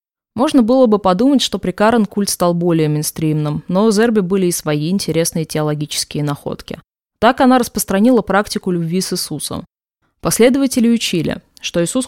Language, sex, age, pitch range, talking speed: Russian, female, 20-39, 160-205 Hz, 150 wpm